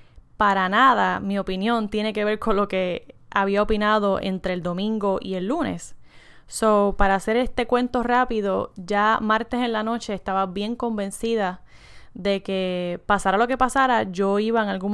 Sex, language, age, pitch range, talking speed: female, Spanish, 10-29, 190-220 Hz, 170 wpm